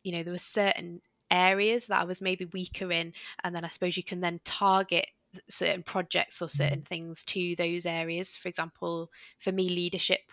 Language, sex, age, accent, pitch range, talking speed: English, female, 20-39, British, 170-190 Hz, 190 wpm